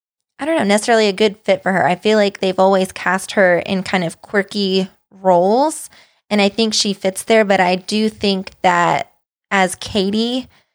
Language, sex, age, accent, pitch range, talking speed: English, female, 20-39, American, 180-210 Hz, 190 wpm